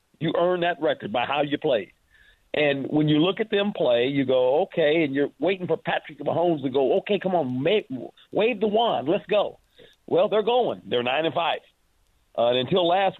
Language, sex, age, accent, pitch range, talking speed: English, male, 50-69, American, 140-195 Hz, 205 wpm